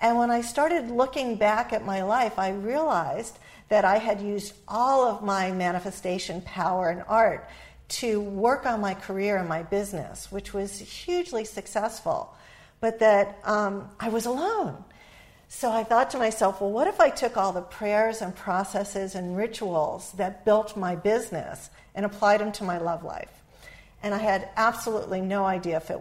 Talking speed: 175 wpm